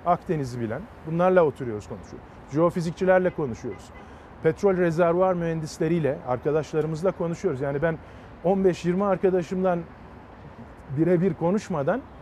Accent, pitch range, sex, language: native, 165-210 Hz, male, Turkish